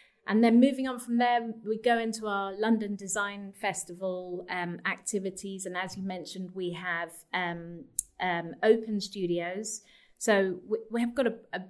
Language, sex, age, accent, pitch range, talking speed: English, female, 30-49, British, 175-215 Hz, 165 wpm